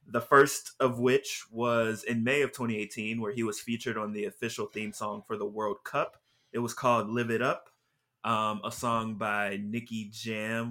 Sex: male